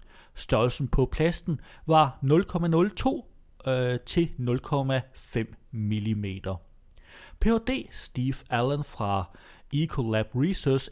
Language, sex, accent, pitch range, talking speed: Danish, male, native, 115-180 Hz, 70 wpm